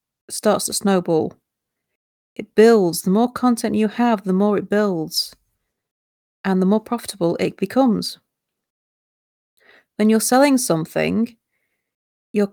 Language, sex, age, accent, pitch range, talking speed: English, female, 30-49, British, 180-215 Hz, 120 wpm